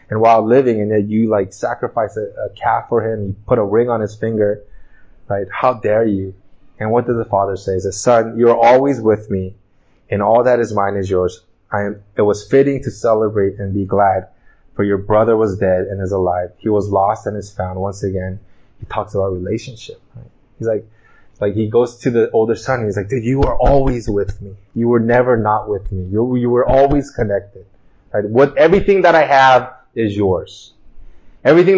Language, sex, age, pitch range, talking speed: English, male, 20-39, 100-130 Hz, 215 wpm